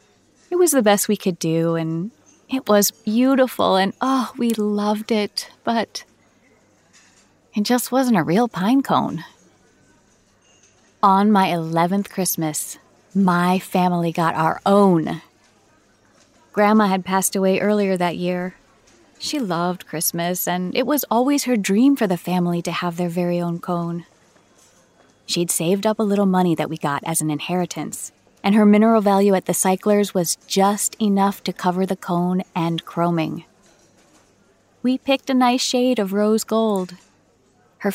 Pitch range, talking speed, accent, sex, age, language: 175-220 Hz, 150 wpm, American, female, 30-49, English